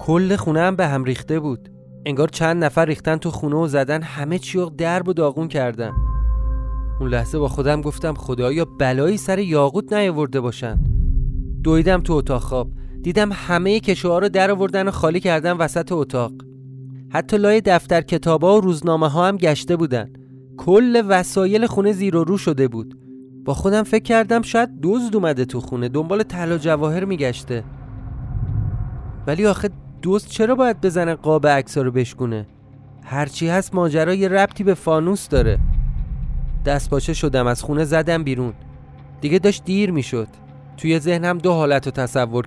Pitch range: 130-175 Hz